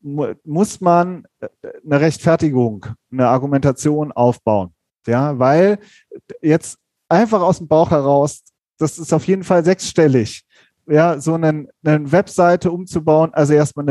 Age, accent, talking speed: 30-49, German, 125 wpm